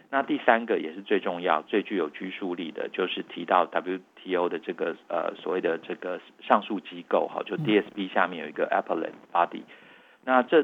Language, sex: Chinese, male